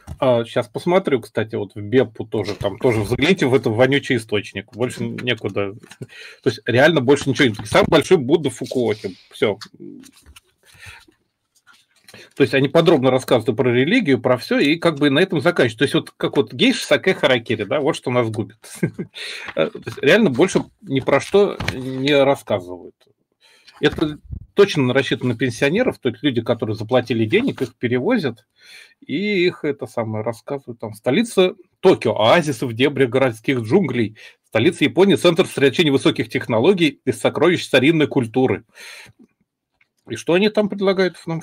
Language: Russian